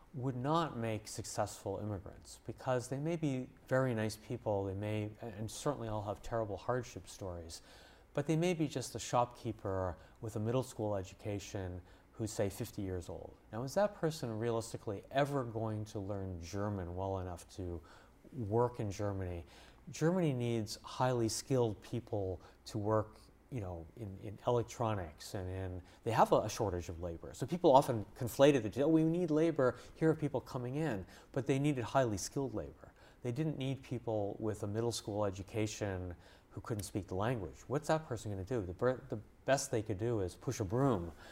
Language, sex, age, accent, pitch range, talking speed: English, male, 30-49, American, 100-125 Hz, 180 wpm